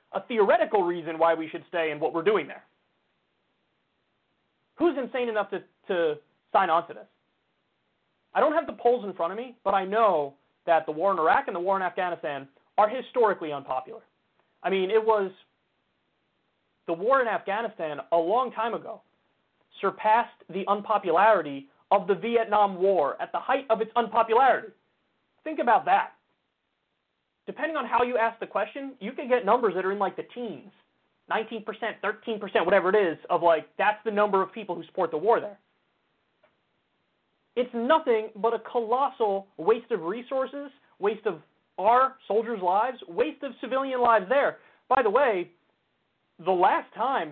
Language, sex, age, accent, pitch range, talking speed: English, male, 30-49, American, 185-240 Hz, 165 wpm